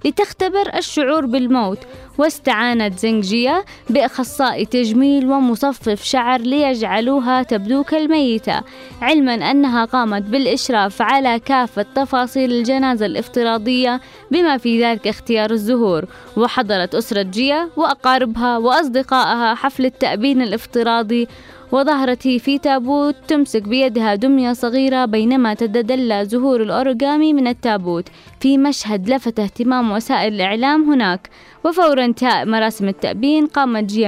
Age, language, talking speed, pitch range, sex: 20-39, English, 105 wpm, 225-275 Hz, female